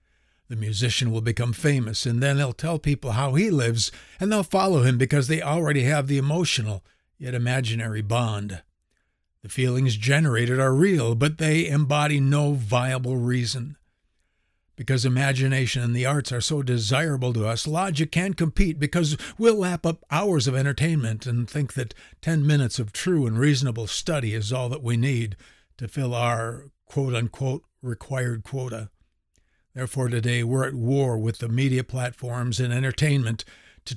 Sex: male